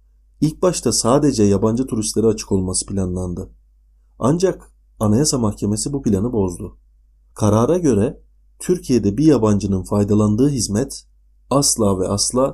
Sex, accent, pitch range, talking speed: male, native, 95-130 Hz, 115 wpm